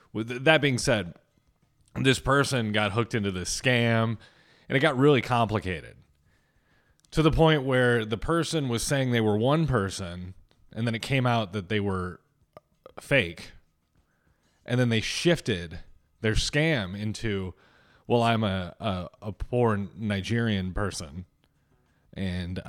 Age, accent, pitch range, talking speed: 30-49, American, 95-125 Hz, 140 wpm